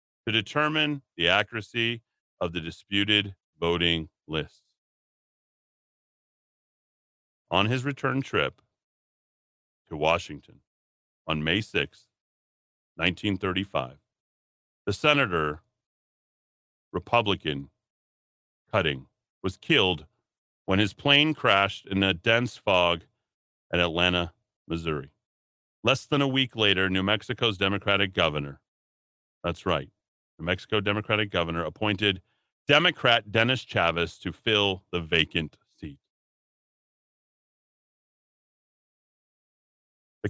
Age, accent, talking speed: 40-59, American, 90 wpm